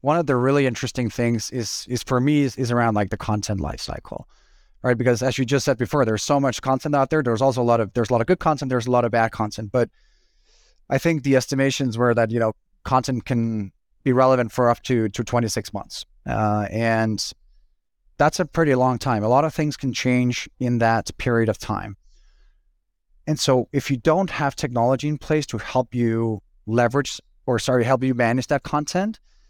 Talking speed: 215 wpm